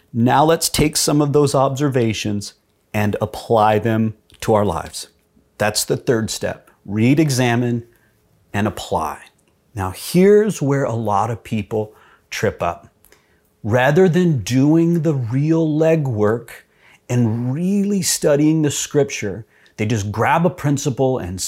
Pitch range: 105-150 Hz